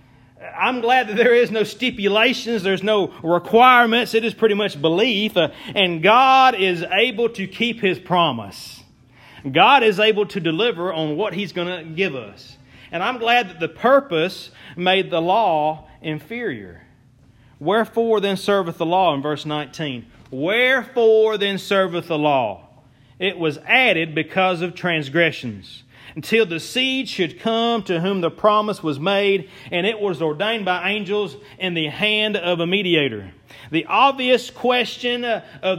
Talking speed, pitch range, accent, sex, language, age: 155 wpm, 160-225 Hz, American, male, English, 40-59